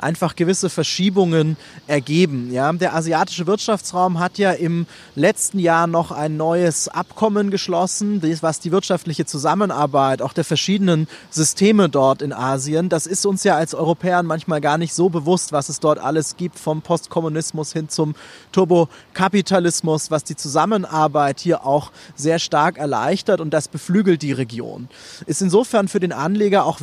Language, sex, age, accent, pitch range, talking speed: German, male, 30-49, German, 155-185 Hz, 150 wpm